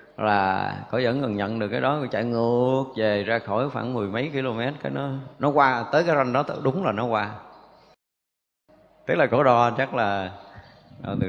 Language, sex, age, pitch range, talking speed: Vietnamese, male, 20-39, 105-135 Hz, 195 wpm